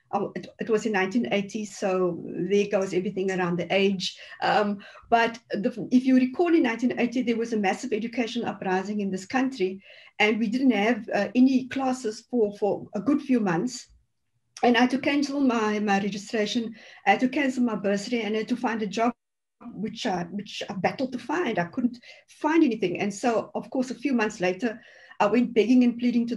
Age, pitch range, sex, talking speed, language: 50-69, 200-250 Hz, female, 200 wpm, English